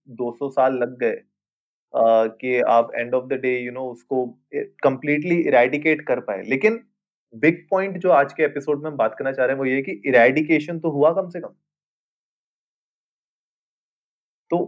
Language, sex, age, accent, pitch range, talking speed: Hindi, male, 20-39, native, 130-160 Hz, 125 wpm